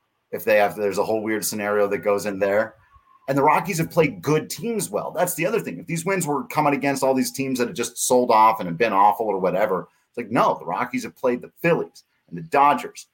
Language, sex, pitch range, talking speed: English, male, 100-140 Hz, 255 wpm